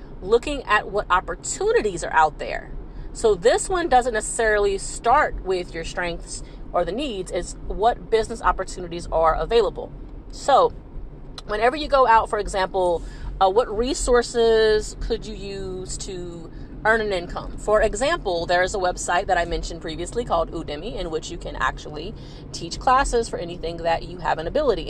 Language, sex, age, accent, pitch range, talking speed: English, female, 30-49, American, 175-230 Hz, 165 wpm